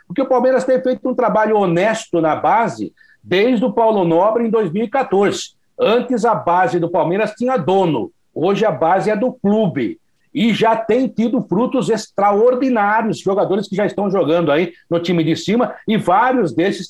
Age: 60-79